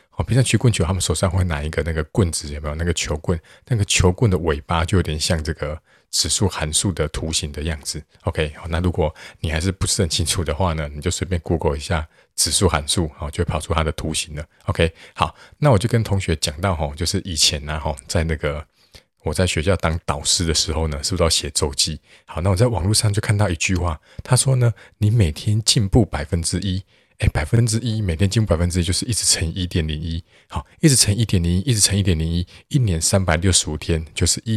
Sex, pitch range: male, 80-100 Hz